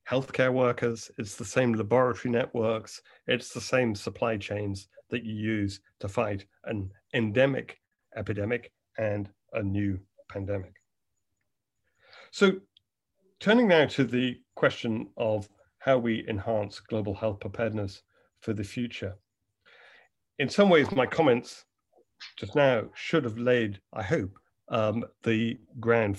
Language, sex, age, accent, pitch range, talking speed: English, male, 40-59, British, 100-125 Hz, 125 wpm